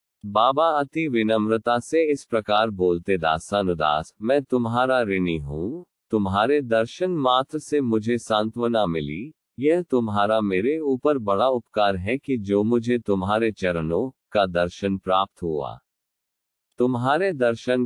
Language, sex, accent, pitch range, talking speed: Hindi, male, native, 100-135 Hz, 125 wpm